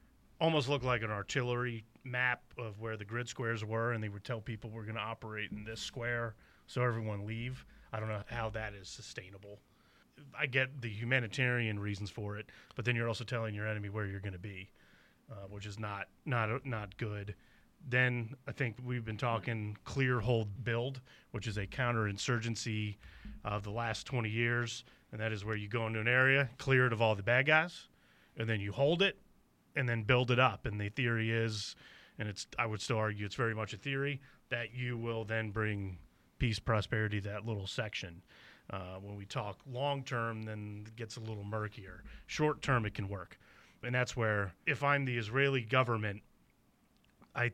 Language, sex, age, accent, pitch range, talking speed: English, male, 30-49, American, 105-125 Hz, 190 wpm